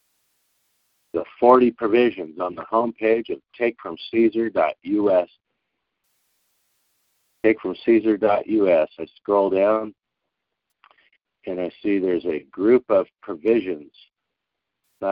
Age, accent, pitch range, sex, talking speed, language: 50-69, American, 100-115 Hz, male, 85 wpm, English